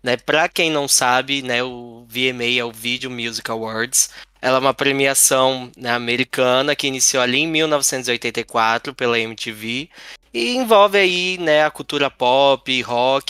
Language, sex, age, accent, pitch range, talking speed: Portuguese, male, 10-29, Brazilian, 125-155 Hz, 155 wpm